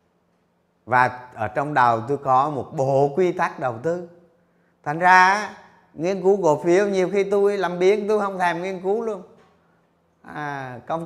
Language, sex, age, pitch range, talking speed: Vietnamese, male, 30-49, 110-175 Hz, 170 wpm